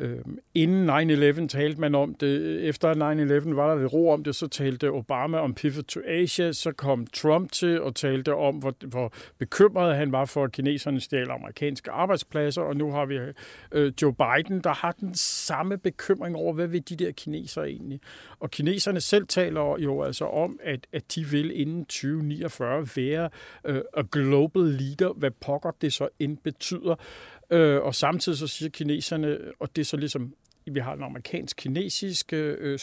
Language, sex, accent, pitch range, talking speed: Danish, male, native, 135-160 Hz, 170 wpm